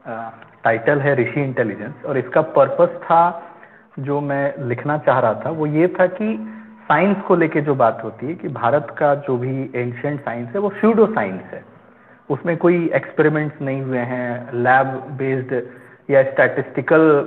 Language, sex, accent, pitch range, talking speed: Hindi, male, native, 135-175 Hz, 165 wpm